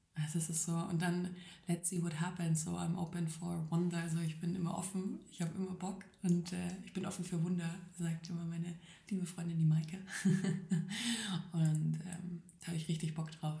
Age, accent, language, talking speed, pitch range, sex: 20-39, German, German, 200 wpm, 165-185 Hz, female